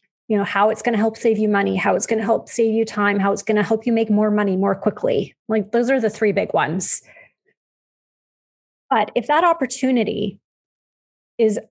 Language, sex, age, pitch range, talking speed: English, female, 30-49, 200-235 Hz, 210 wpm